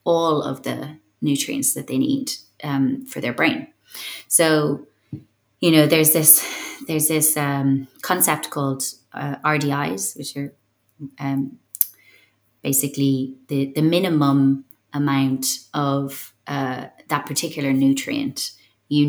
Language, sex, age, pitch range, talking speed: English, female, 30-49, 135-155 Hz, 115 wpm